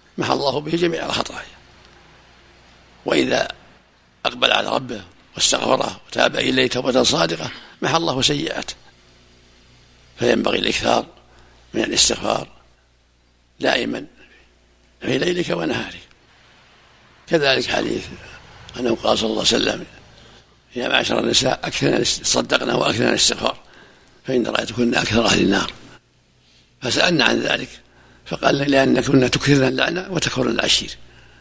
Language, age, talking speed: Arabic, 60-79, 105 wpm